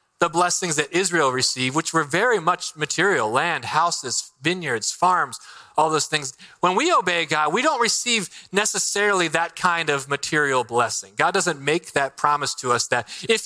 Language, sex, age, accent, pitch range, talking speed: English, male, 30-49, American, 160-195 Hz, 175 wpm